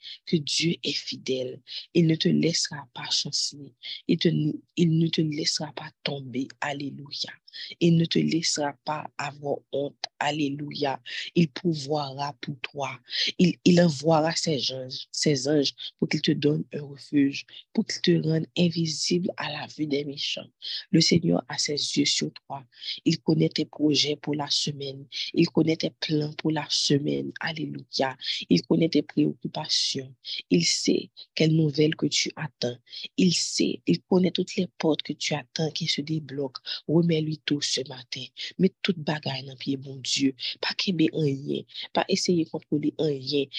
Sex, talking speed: female, 165 wpm